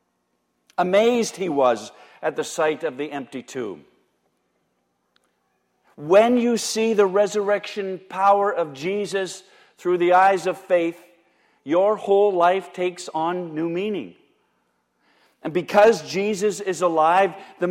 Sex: male